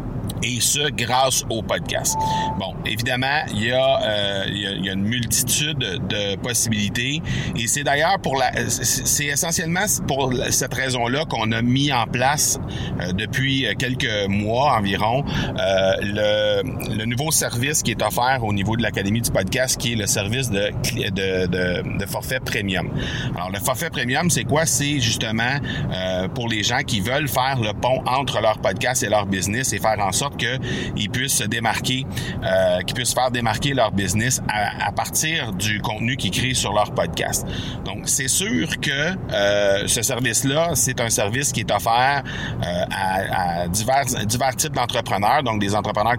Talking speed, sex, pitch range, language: 180 wpm, male, 105-130 Hz, French